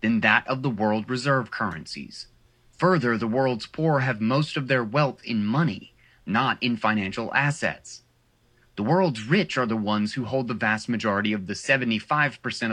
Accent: American